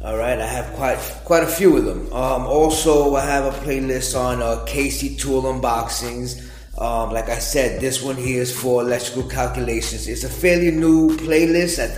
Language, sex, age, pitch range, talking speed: English, male, 20-39, 115-140 Hz, 190 wpm